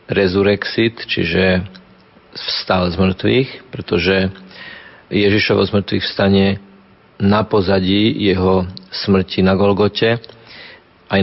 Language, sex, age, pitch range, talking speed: Slovak, male, 40-59, 95-100 Hz, 90 wpm